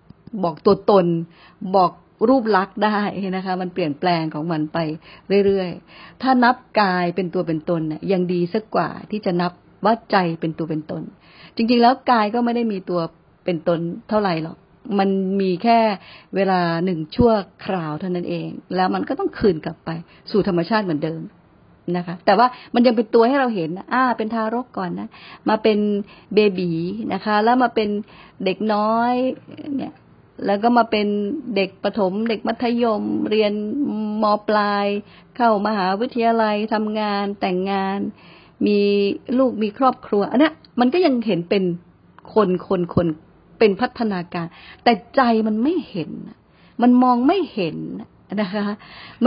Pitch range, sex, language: 175-225 Hz, female, Thai